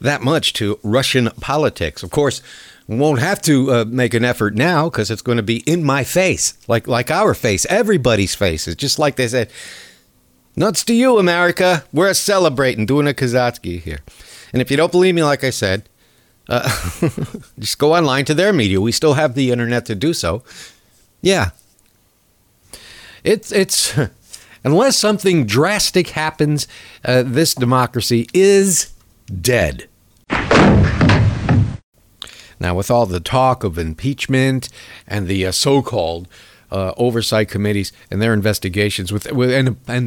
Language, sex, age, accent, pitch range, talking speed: English, male, 60-79, American, 105-150 Hz, 150 wpm